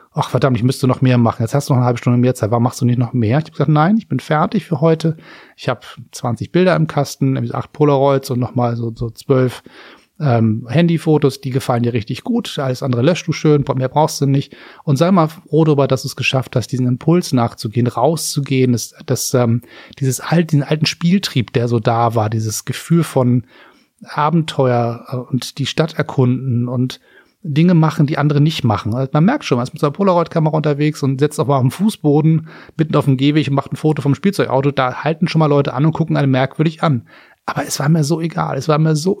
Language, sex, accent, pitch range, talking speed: German, male, German, 125-155 Hz, 230 wpm